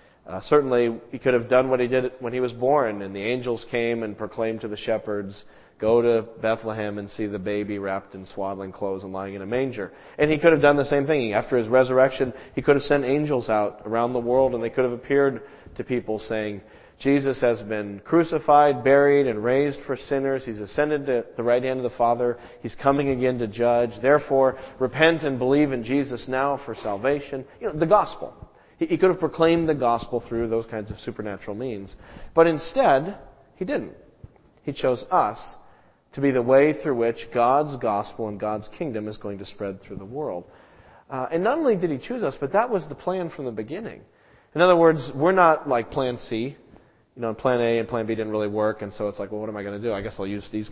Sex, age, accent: male, 40-59, American